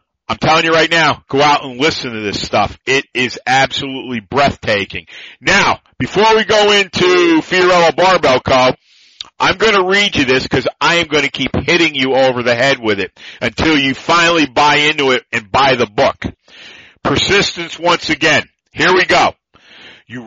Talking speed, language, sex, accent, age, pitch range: 180 wpm, English, male, American, 50-69, 130-175 Hz